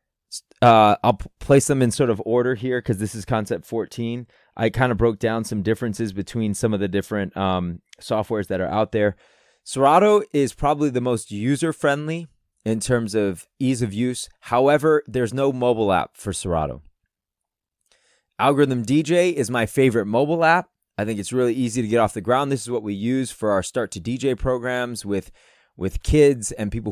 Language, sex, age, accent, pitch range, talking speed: English, male, 20-39, American, 110-135 Hz, 190 wpm